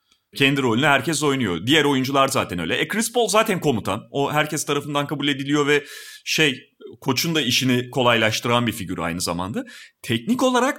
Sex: male